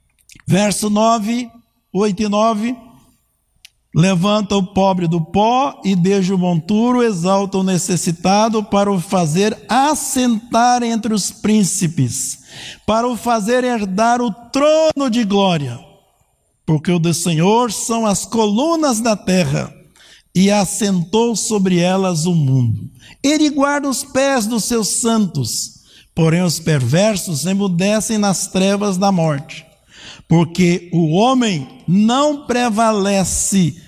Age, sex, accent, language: 60-79, male, Brazilian, Portuguese